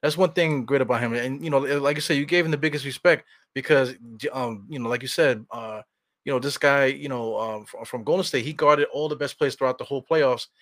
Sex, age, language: male, 20-39, English